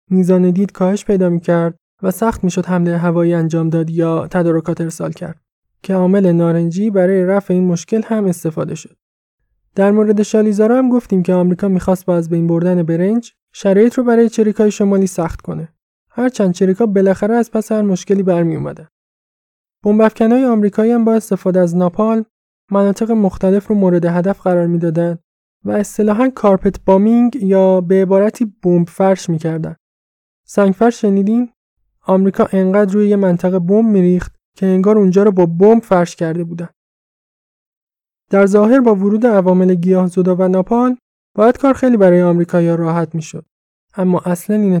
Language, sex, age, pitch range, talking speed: Persian, male, 20-39, 175-210 Hz, 155 wpm